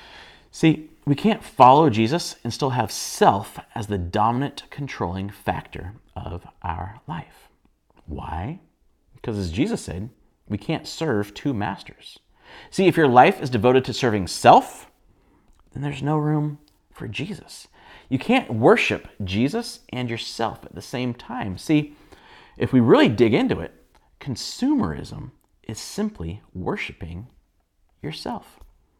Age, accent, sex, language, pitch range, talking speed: 40-59, American, male, English, 100-155 Hz, 130 wpm